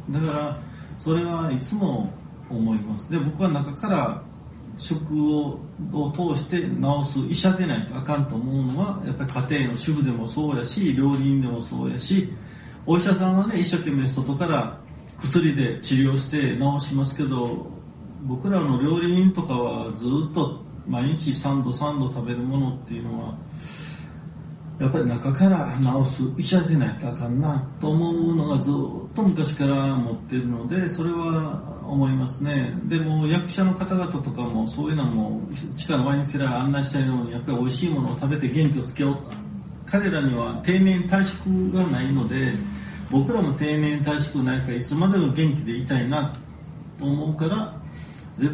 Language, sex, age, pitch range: Japanese, male, 40-59, 130-165 Hz